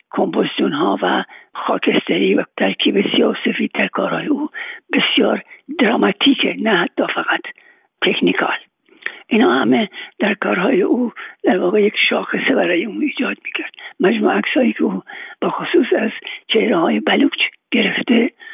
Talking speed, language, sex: 125 wpm, Persian, male